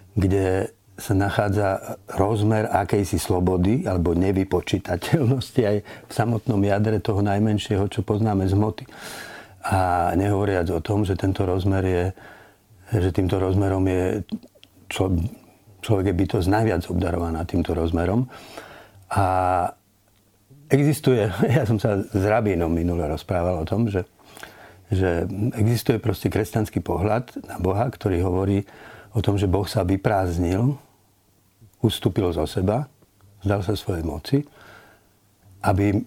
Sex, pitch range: male, 95-110 Hz